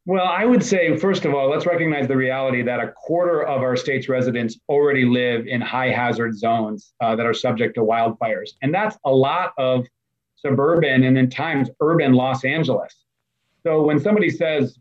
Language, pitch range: English, 130-160 Hz